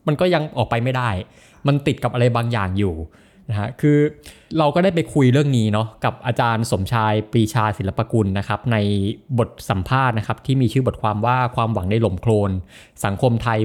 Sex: male